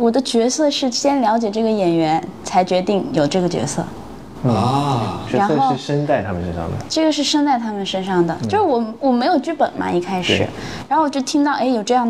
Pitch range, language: 170-230 Hz, Chinese